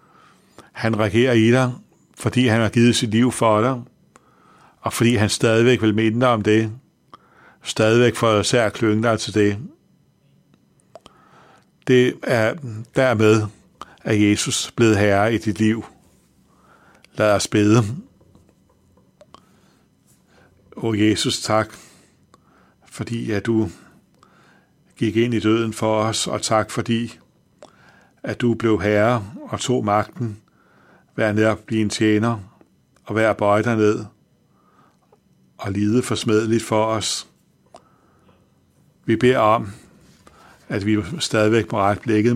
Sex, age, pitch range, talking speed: male, 60-79, 105-120 Hz, 125 wpm